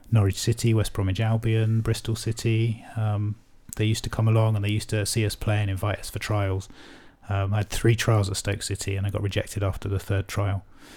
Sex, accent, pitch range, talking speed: male, British, 100-115 Hz, 225 wpm